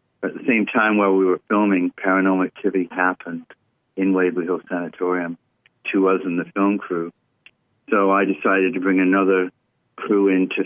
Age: 50-69